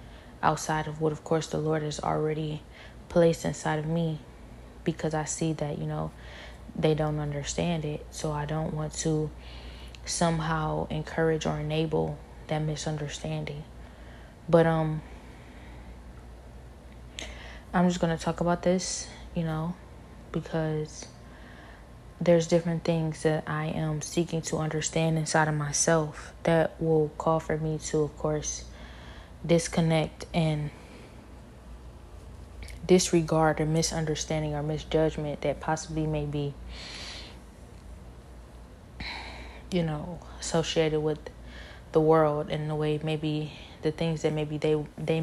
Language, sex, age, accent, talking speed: English, female, 20-39, American, 125 wpm